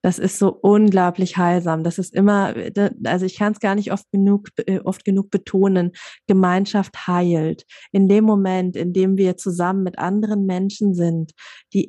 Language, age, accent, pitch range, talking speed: German, 20-39, German, 175-205 Hz, 165 wpm